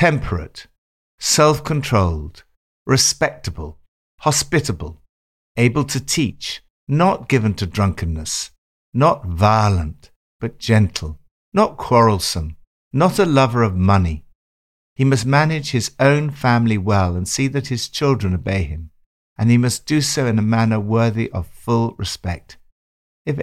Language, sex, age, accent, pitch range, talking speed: English, male, 60-79, British, 85-130 Hz, 130 wpm